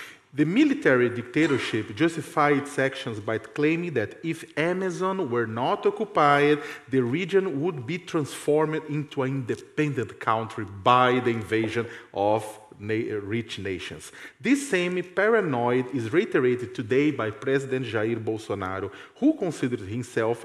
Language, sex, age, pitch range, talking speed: English, male, 40-59, 125-185 Hz, 125 wpm